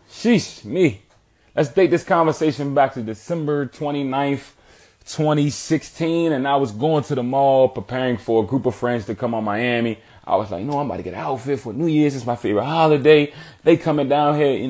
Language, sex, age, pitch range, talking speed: English, male, 20-39, 100-135 Hz, 205 wpm